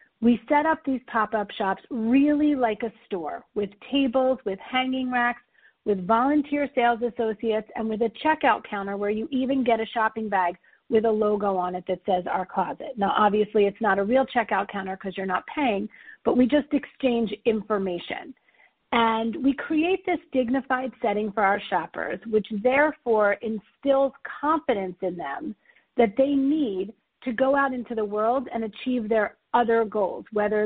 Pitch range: 210-260 Hz